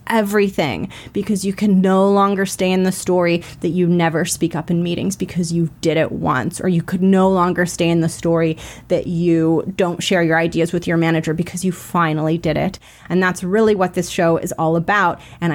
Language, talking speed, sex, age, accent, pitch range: English, 210 wpm, female, 30-49, American, 170-195 Hz